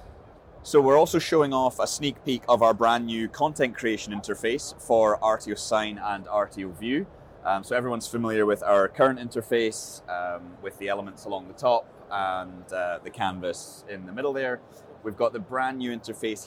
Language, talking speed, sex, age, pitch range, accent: English, 180 wpm, male, 20-39, 95-120 Hz, British